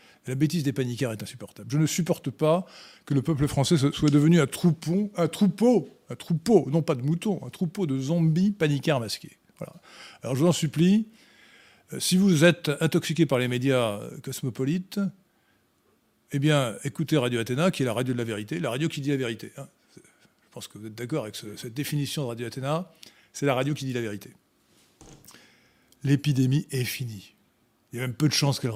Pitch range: 120-160 Hz